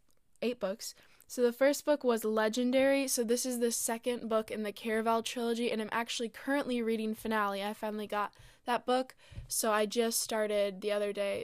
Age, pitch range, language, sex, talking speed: 10-29, 210-240 Hz, English, female, 190 wpm